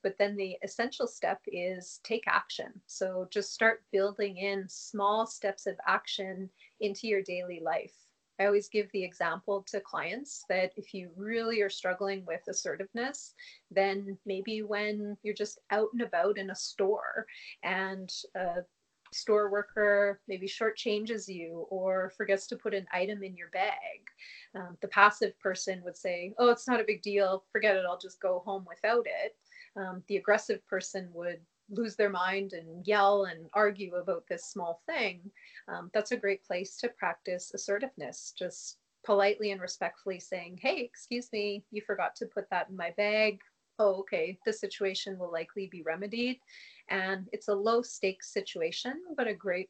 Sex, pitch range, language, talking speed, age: female, 185-215 Hz, English, 170 wpm, 30-49